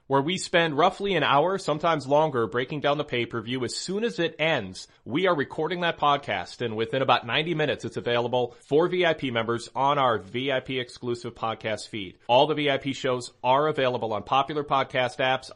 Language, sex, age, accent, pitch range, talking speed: English, male, 30-49, American, 115-150 Hz, 185 wpm